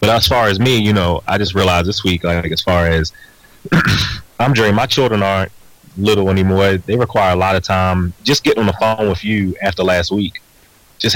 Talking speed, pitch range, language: 215 wpm, 85-105 Hz, English